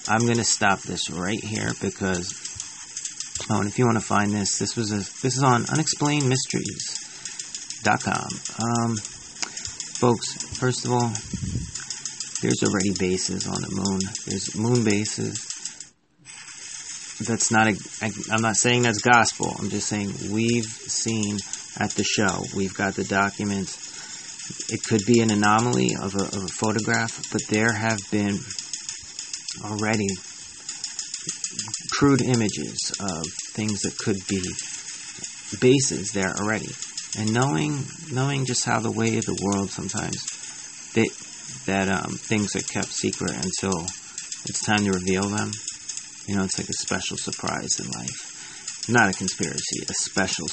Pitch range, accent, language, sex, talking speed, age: 100-115 Hz, American, English, male, 140 wpm, 30-49